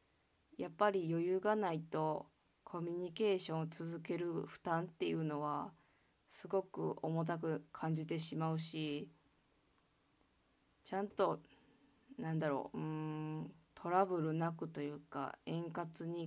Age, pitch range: 20-39, 155-175 Hz